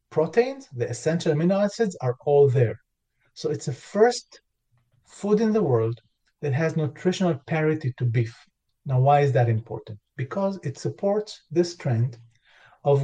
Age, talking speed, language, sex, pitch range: 40-59, 150 wpm, English, male, 125-175 Hz